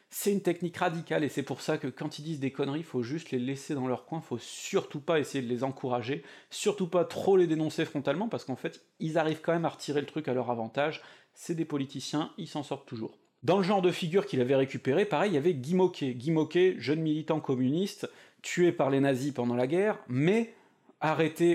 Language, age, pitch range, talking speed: French, 30-49, 135-175 Hz, 235 wpm